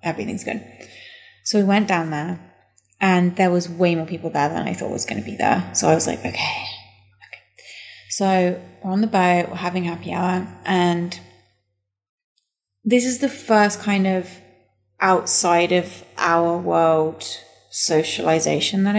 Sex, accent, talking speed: female, British, 160 wpm